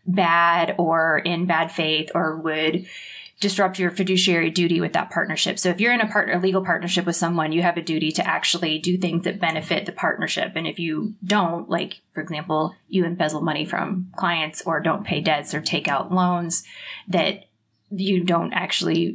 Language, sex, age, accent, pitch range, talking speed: English, female, 20-39, American, 170-195 Hz, 190 wpm